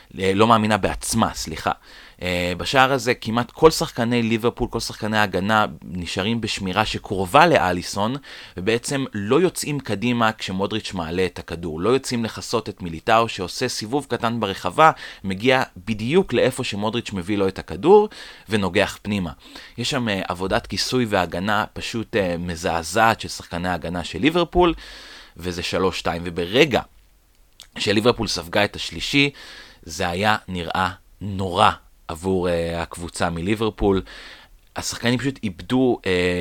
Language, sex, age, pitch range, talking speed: Hebrew, male, 30-49, 90-115 Hz, 125 wpm